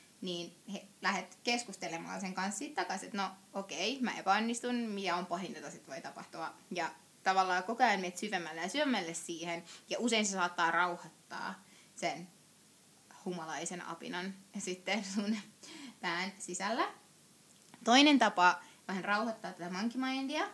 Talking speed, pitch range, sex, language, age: 135 wpm, 170-220 Hz, female, Finnish, 20-39